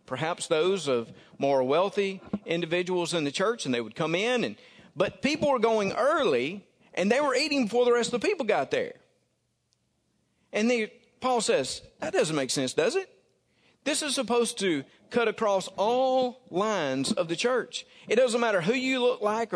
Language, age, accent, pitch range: English, 40-59, American, 170-245 Hz